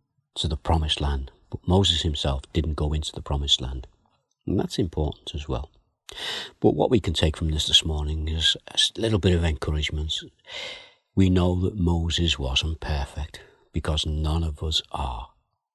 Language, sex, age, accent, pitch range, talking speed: English, male, 60-79, British, 75-95 Hz, 165 wpm